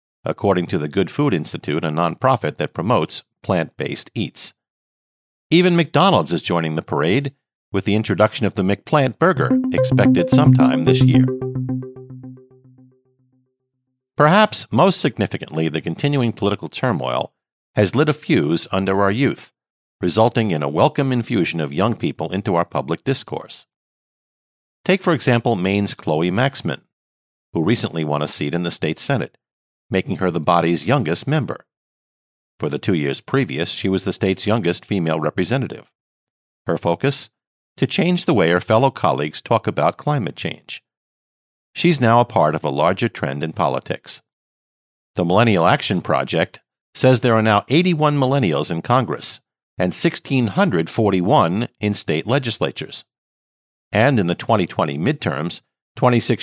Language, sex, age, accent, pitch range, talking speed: English, male, 50-69, American, 95-130 Hz, 145 wpm